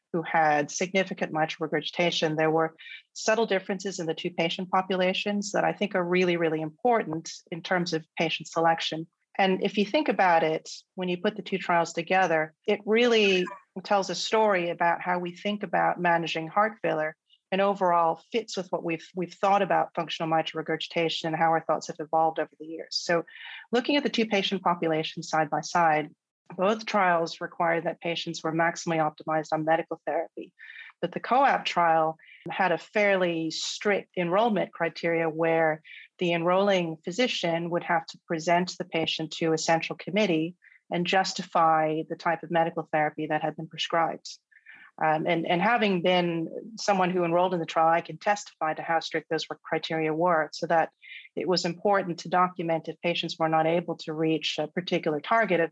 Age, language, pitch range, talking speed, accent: 40-59, English, 160-185 Hz, 180 wpm, American